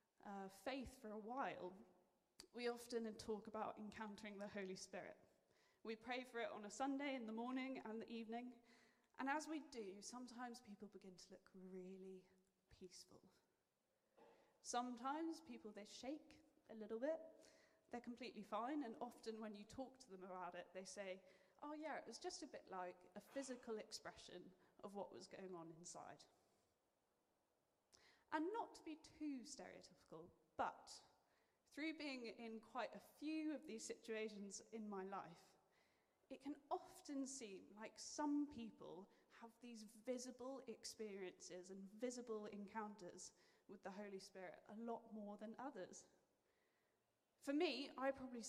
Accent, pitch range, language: British, 205-275 Hz, English